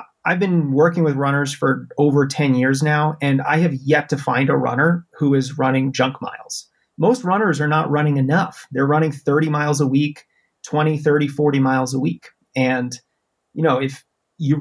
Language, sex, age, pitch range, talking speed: English, male, 30-49, 130-160 Hz, 190 wpm